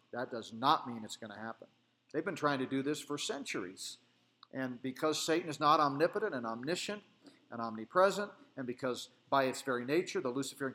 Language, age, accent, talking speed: English, 40-59, American, 190 wpm